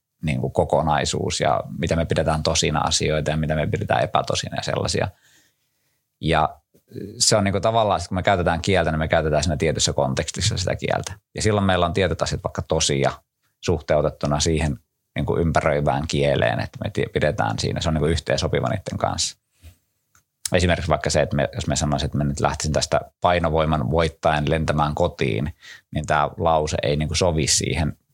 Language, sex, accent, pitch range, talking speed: Finnish, male, native, 75-90 Hz, 175 wpm